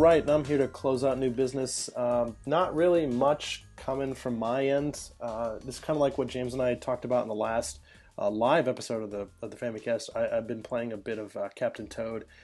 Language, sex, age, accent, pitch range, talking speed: English, male, 20-39, American, 115-135 Hz, 235 wpm